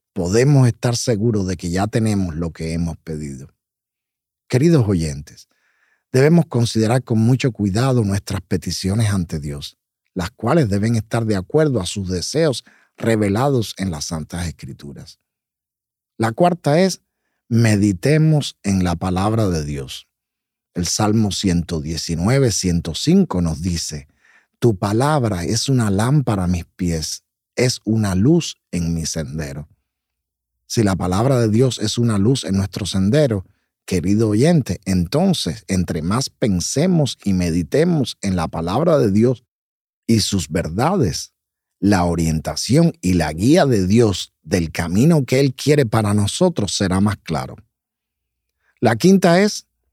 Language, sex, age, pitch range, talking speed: Spanish, male, 50-69, 85-120 Hz, 135 wpm